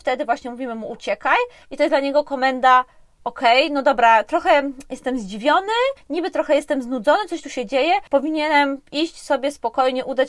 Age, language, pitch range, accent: 20-39, Polish, 245-310 Hz, native